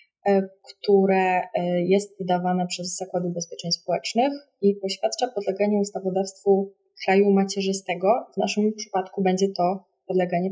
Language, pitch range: Polish, 185-210 Hz